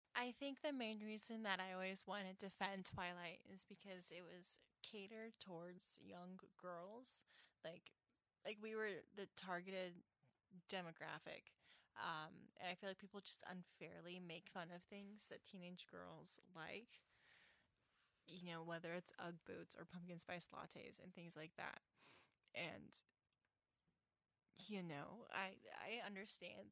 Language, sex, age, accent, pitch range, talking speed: English, female, 10-29, American, 175-215 Hz, 145 wpm